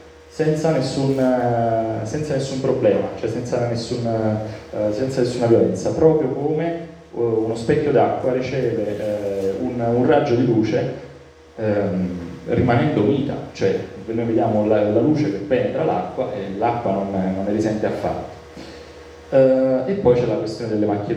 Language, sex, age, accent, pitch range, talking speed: Italian, male, 30-49, native, 100-125 Hz, 130 wpm